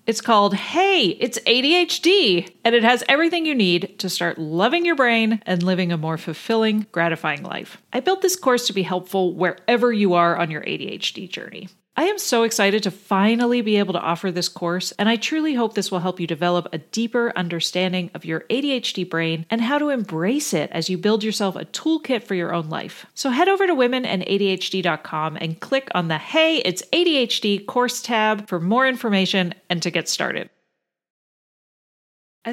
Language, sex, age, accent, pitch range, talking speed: English, female, 40-59, American, 170-220 Hz, 190 wpm